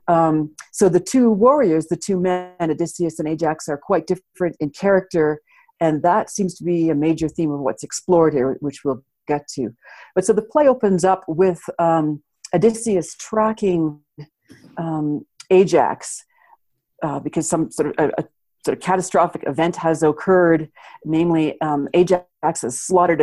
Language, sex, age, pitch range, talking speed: English, female, 50-69, 150-185 Hz, 150 wpm